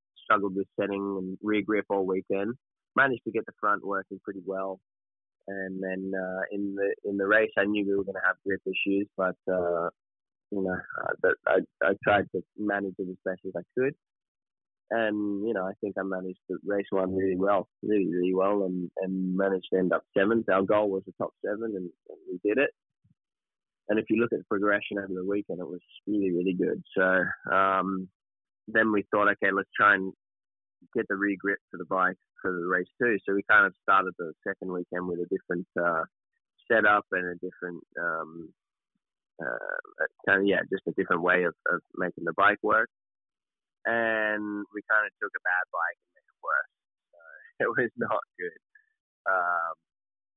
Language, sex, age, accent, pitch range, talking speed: English, male, 20-39, Australian, 95-105 Hz, 200 wpm